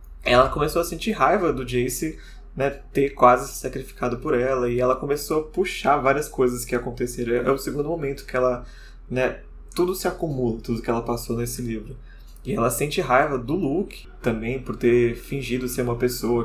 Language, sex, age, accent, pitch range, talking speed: Portuguese, male, 20-39, Brazilian, 120-140 Hz, 190 wpm